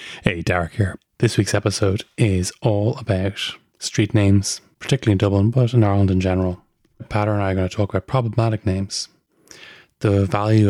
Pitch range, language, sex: 95-110 Hz, English, male